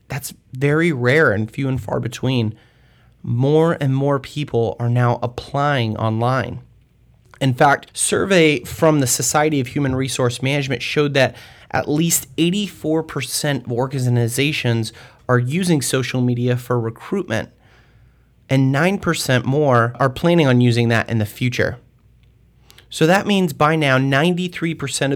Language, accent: English, American